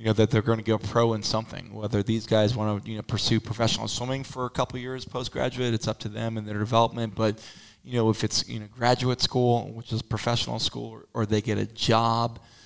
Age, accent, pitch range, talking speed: 20-39, American, 110-120 Hz, 240 wpm